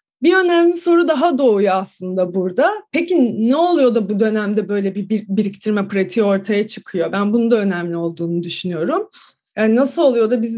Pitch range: 210-265 Hz